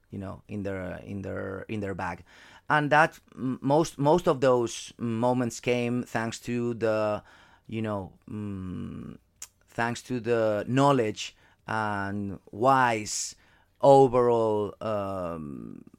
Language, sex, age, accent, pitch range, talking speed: English, male, 30-49, Spanish, 105-135 Hz, 115 wpm